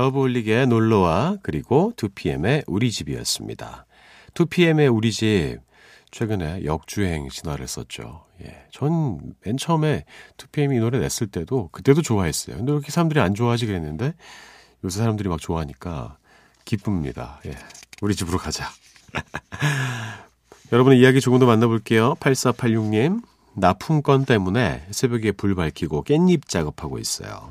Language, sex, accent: Korean, male, native